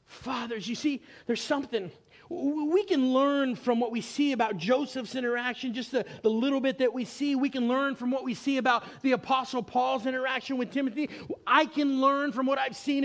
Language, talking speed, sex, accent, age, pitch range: English, 210 wpm, male, American, 30-49, 220-275 Hz